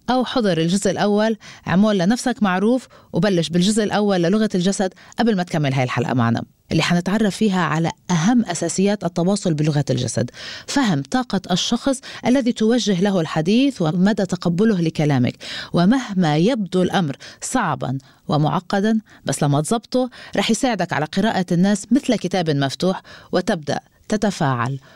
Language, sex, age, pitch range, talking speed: Arabic, female, 30-49, 165-220 Hz, 130 wpm